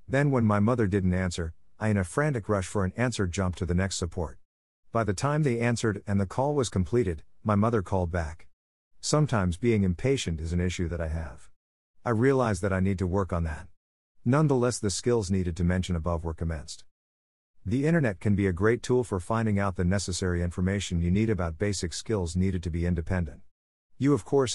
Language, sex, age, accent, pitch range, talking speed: English, male, 50-69, American, 85-115 Hz, 210 wpm